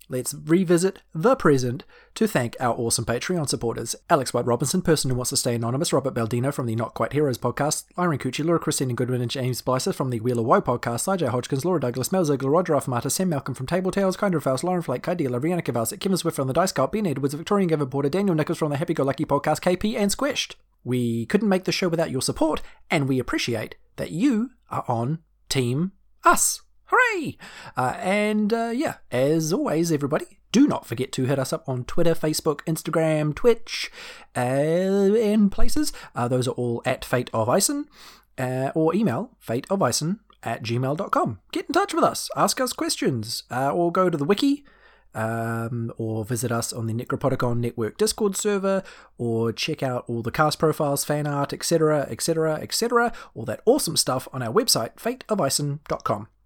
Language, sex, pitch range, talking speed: English, male, 125-190 Hz, 190 wpm